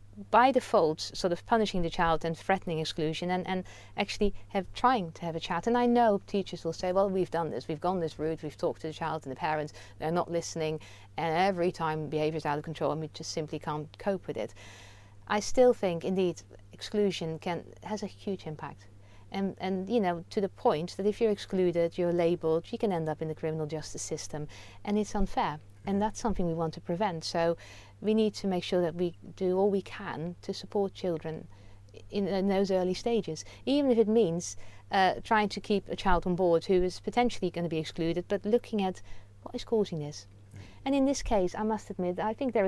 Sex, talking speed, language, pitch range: female, 220 wpm, English, 160-200 Hz